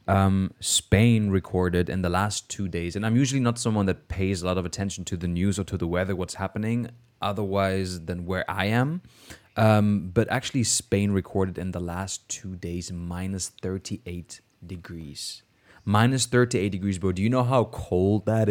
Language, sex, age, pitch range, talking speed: English, male, 20-39, 95-120 Hz, 180 wpm